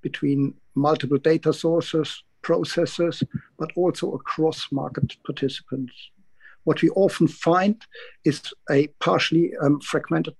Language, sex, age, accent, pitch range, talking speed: English, male, 60-79, German, 140-165 Hz, 110 wpm